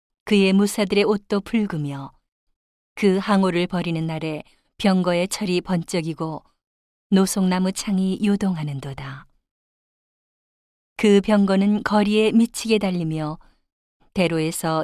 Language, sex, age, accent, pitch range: Korean, female, 40-59, native, 165-200 Hz